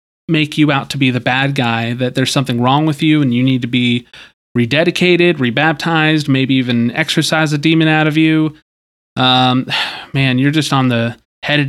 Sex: male